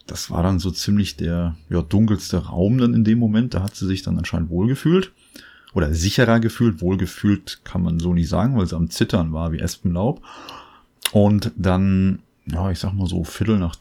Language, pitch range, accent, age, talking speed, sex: German, 90-105 Hz, German, 30-49, 190 wpm, male